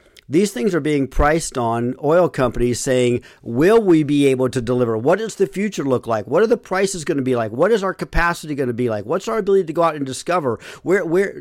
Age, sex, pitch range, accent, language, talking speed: 50-69, male, 125-165 Hz, American, English, 245 wpm